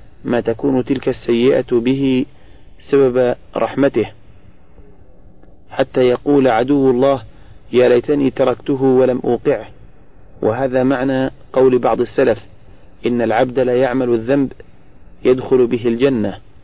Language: Arabic